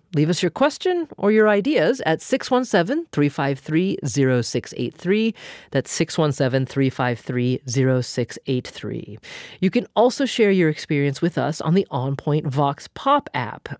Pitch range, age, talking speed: 135-200 Hz, 30-49, 125 wpm